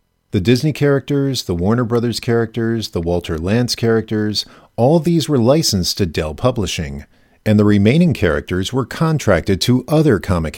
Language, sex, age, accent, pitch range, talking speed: English, male, 50-69, American, 85-115 Hz, 155 wpm